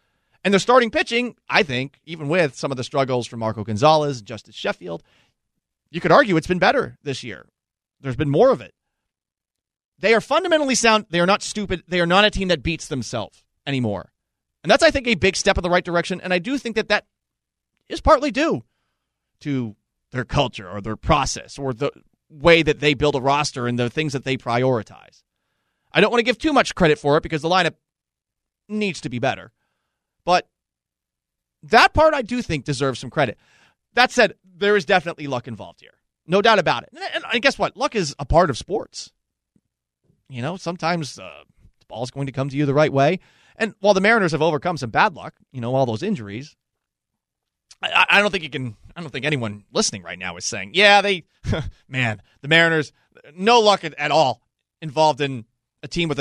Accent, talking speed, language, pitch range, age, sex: American, 205 wpm, English, 125-185 Hz, 30-49, male